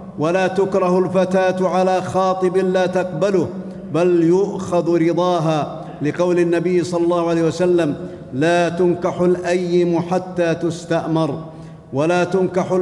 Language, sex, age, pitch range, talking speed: Arabic, male, 50-69, 165-185 Hz, 110 wpm